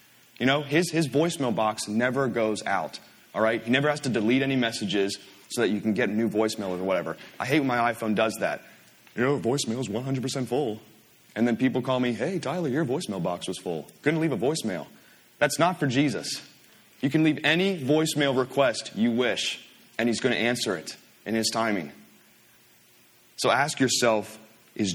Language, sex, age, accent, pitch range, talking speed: English, male, 30-49, American, 110-135 Hz, 195 wpm